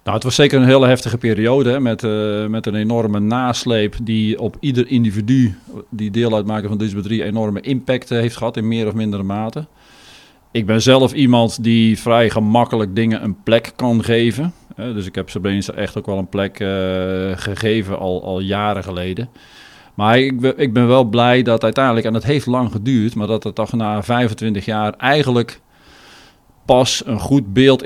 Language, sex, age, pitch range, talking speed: Dutch, male, 40-59, 105-120 Hz, 190 wpm